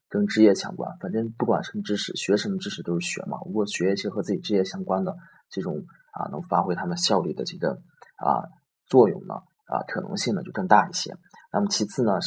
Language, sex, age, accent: Chinese, male, 20-39, native